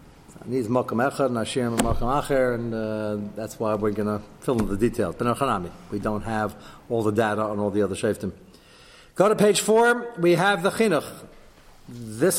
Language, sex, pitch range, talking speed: English, male, 110-145 Hz, 150 wpm